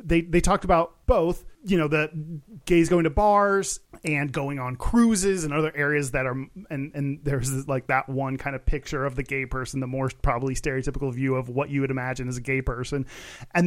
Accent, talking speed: American, 215 wpm